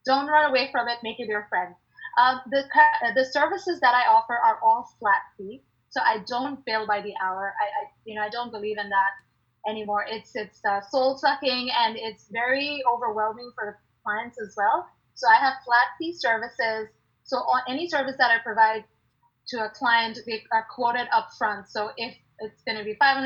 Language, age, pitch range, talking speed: English, 20-39, 215-265 Hz, 195 wpm